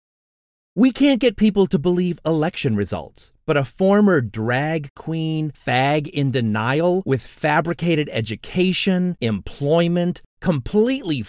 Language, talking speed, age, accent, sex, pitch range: English, 110 wpm, 30-49, American, male, 110-180 Hz